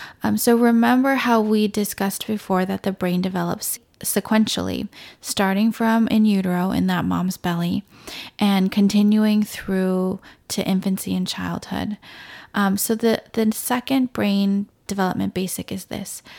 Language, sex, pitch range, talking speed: English, female, 190-220 Hz, 135 wpm